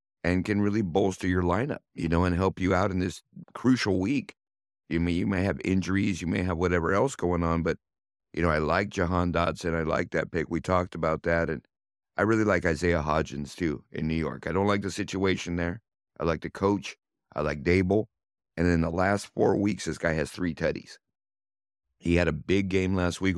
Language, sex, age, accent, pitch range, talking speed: English, male, 50-69, American, 85-100 Hz, 220 wpm